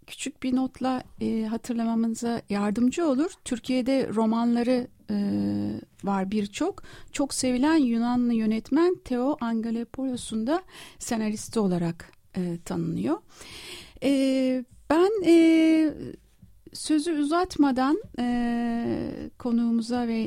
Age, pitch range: 60-79, 205-260 Hz